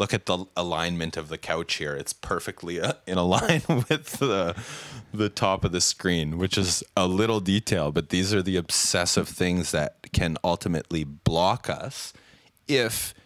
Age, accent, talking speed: 30-49, American, 170 wpm